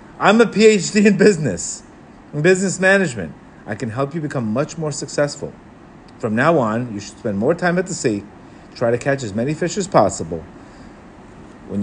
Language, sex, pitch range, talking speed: English, male, 125-185 Hz, 185 wpm